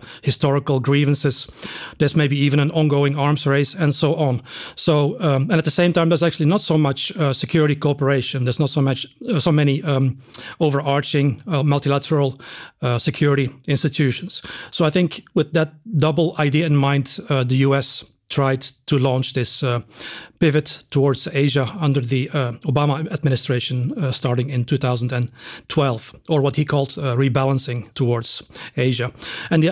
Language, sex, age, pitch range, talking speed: English, male, 40-59, 135-155 Hz, 160 wpm